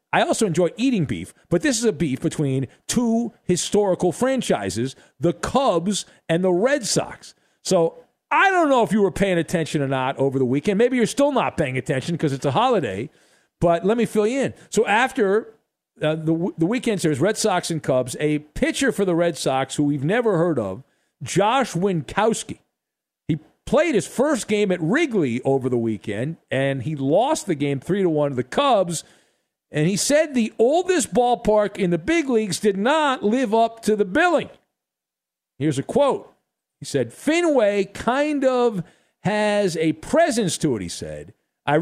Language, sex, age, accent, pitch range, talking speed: English, male, 50-69, American, 155-250 Hz, 185 wpm